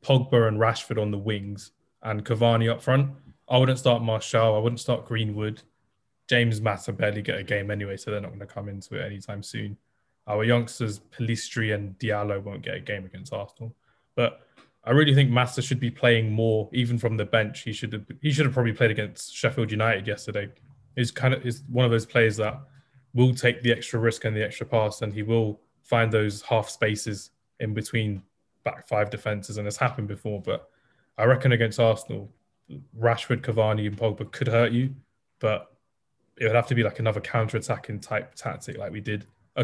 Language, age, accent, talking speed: English, 20-39, British, 200 wpm